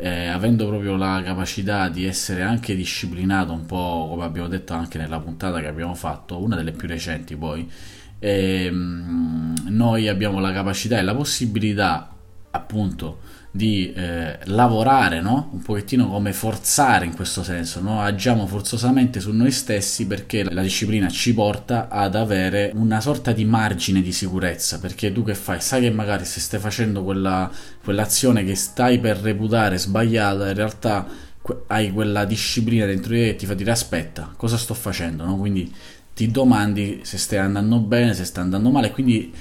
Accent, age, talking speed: native, 20-39, 165 wpm